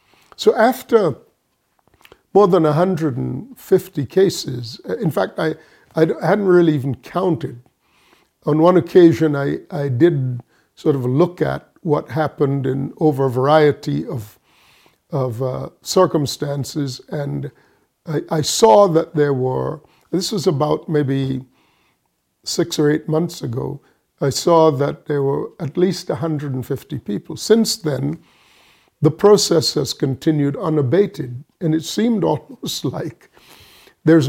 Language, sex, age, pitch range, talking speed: English, male, 50-69, 140-175 Hz, 135 wpm